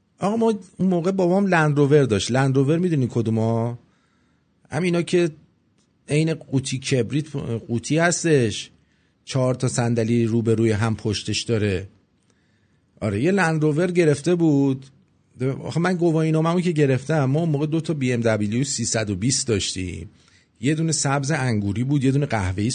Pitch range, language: 110-155 Hz, English